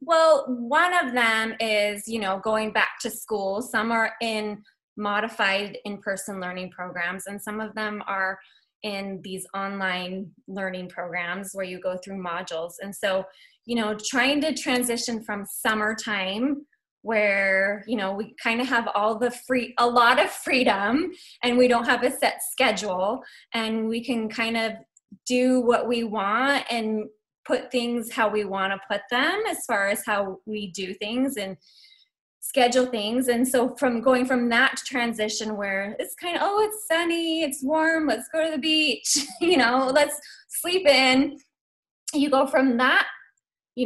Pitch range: 205-265 Hz